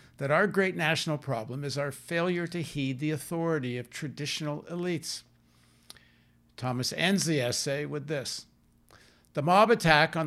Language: English